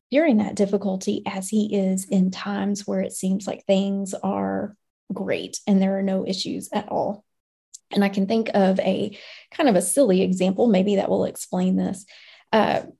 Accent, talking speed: American, 180 wpm